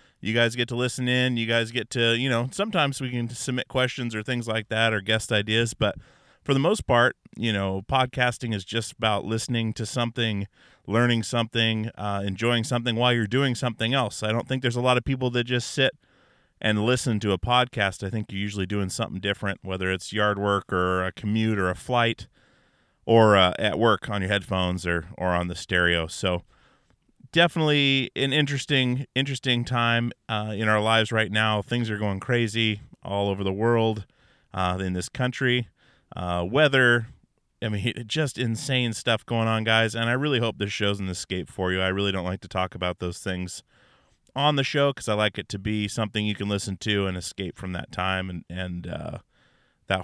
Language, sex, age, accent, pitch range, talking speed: English, male, 30-49, American, 100-120 Hz, 205 wpm